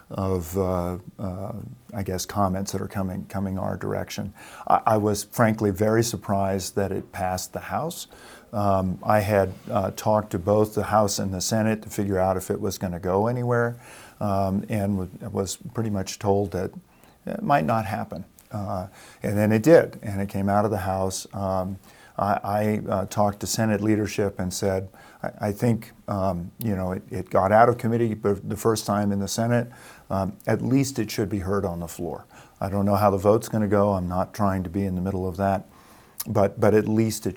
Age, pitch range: 50-69, 95-110 Hz